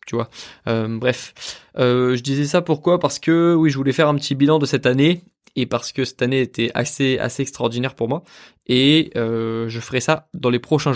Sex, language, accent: male, French, French